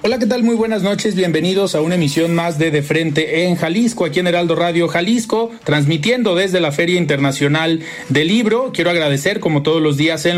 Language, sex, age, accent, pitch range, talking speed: Spanish, male, 40-59, Mexican, 155-200 Hz, 200 wpm